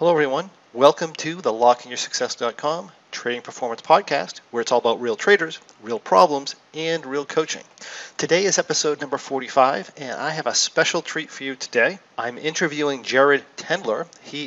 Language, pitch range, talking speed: English, 125-155 Hz, 160 wpm